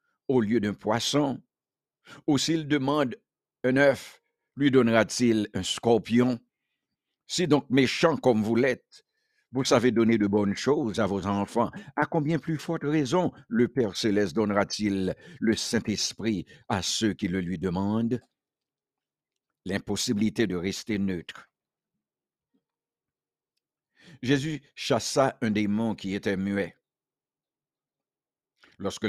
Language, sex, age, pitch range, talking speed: English, male, 60-79, 105-135 Hz, 120 wpm